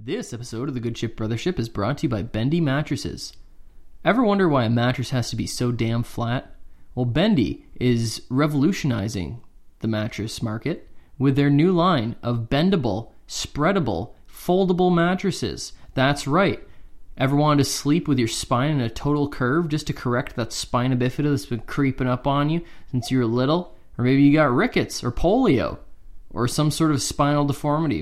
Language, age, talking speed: English, 20-39, 180 wpm